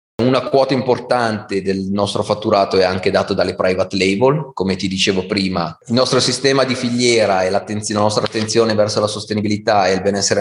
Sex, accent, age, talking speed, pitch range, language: male, native, 30-49, 180 wpm, 95-110 Hz, Italian